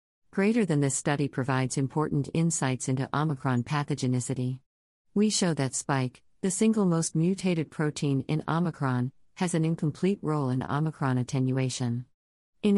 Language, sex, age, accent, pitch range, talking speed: English, female, 50-69, American, 130-160 Hz, 135 wpm